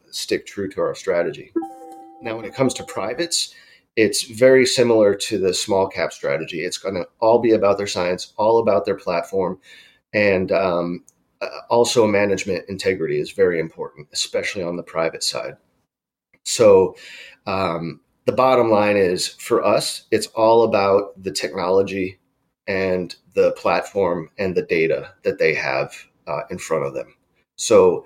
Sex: male